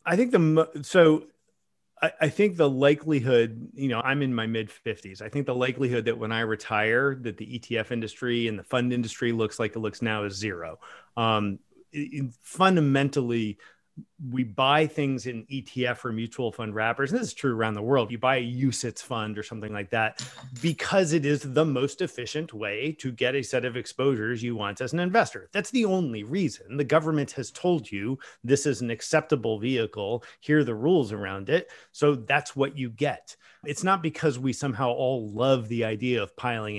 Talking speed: 195 wpm